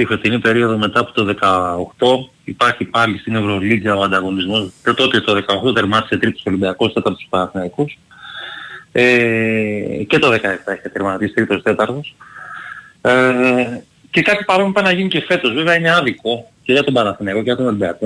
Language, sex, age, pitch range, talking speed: Greek, male, 30-49, 105-140 Hz, 160 wpm